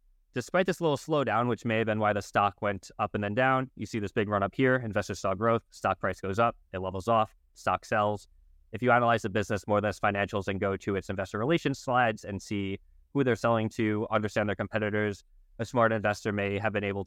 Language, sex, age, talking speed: English, male, 20-39, 235 wpm